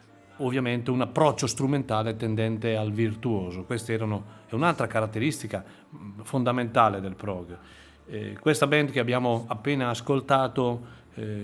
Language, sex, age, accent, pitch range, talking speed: Italian, male, 40-59, native, 105-135 Hz, 115 wpm